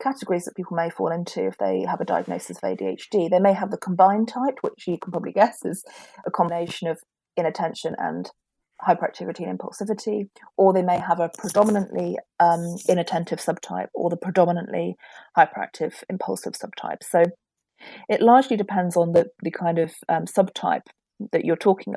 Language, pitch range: English, 170-205 Hz